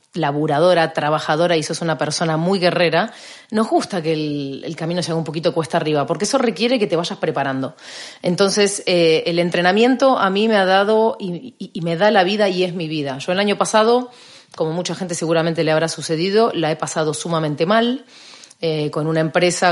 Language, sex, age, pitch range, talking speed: Spanish, female, 30-49, 160-190 Hz, 200 wpm